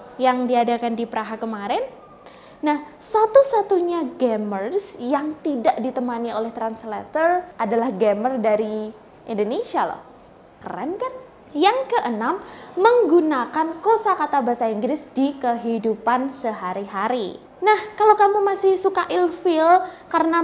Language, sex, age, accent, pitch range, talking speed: Indonesian, female, 20-39, native, 240-345 Hz, 110 wpm